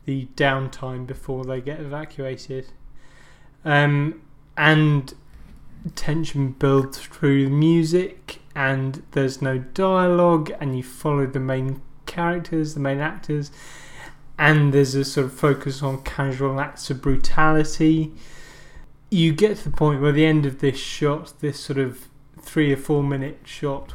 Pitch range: 135-155 Hz